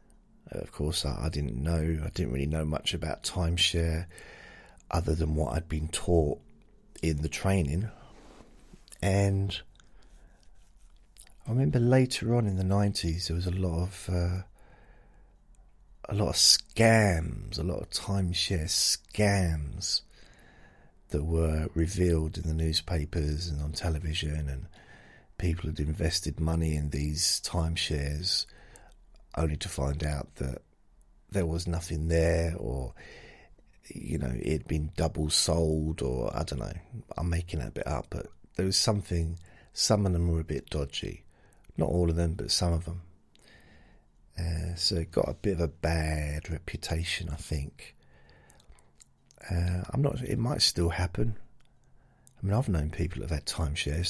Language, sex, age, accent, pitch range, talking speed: English, male, 40-59, British, 75-90 Hz, 150 wpm